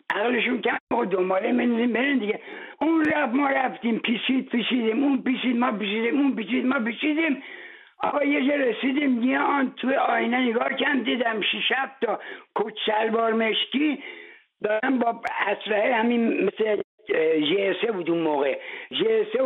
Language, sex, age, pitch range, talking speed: English, male, 60-79, 195-255 Hz, 145 wpm